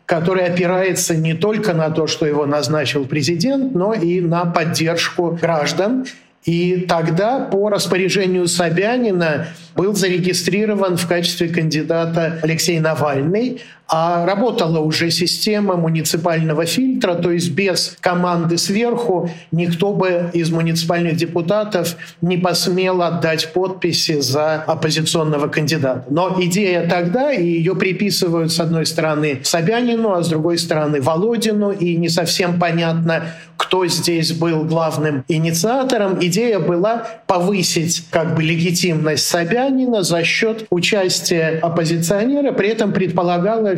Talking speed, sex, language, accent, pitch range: 120 wpm, male, Russian, native, 165-195 Hz